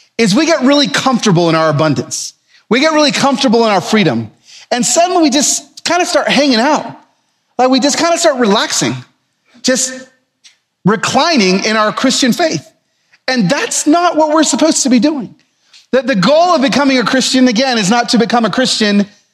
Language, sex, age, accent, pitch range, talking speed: English, male, 40-59, American, 215-300 Hz, 185 wpm